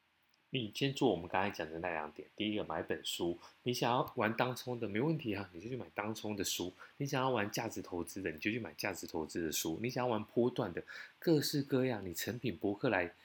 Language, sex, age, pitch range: Chinese, male, 20-39, 95-125 Hz